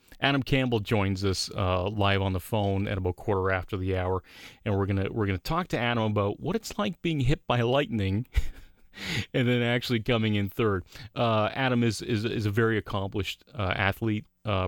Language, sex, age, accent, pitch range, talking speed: English, male, 30-49, American, 95-115 Hz, 195 wpm